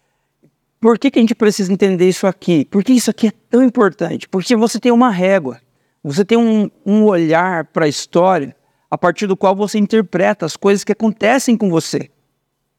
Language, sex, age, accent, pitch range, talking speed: Portuguese, male, 50-69, Brazilian, 160-210 Hz, 190 wpm